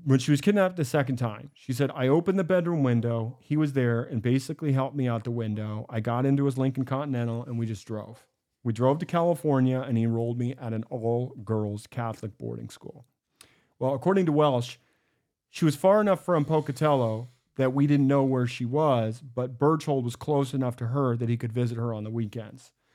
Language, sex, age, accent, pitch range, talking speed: English, male, 40-59, American, 120-145 Hz, 210 wpm